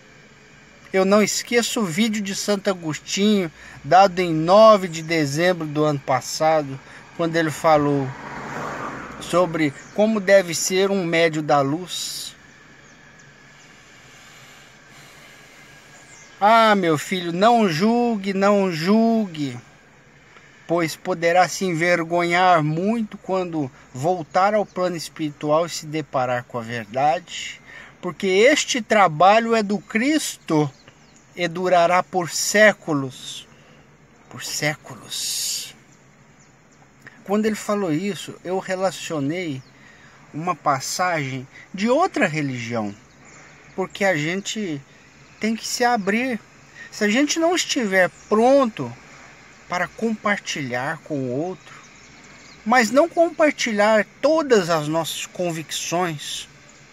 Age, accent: 50-69, Brazilian